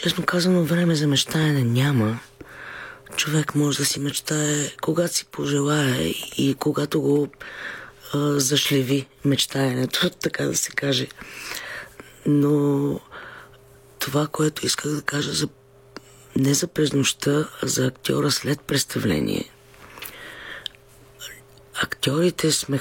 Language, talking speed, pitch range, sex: Bulgarian, 110 wpm, 130-150 Hz, female